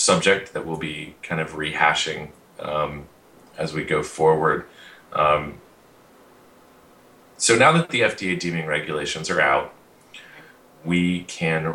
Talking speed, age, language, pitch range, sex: 125 wpm, 30-49, English, 75-85 Hz, male